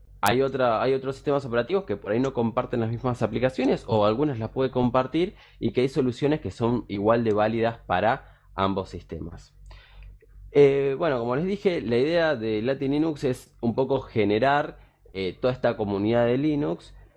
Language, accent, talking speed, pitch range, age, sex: Spanish, Argentinian, 175 wpm, 105-135 Hz, 20-39, male